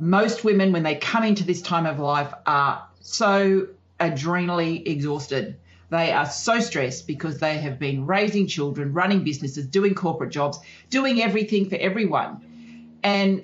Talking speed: 150 wpm